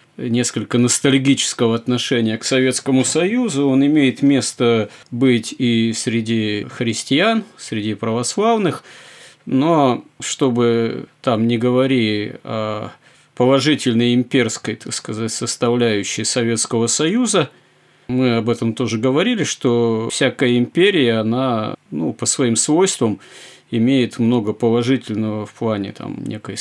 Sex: male